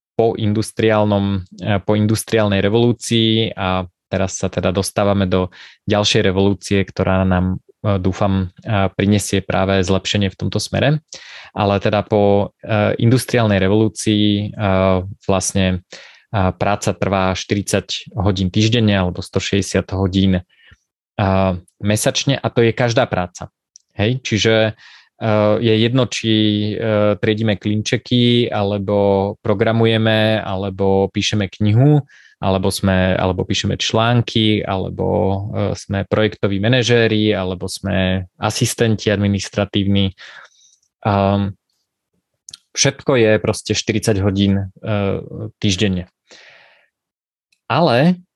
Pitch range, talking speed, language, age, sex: 95-110 Hz, 90 wpm, Slovak, 20-39, male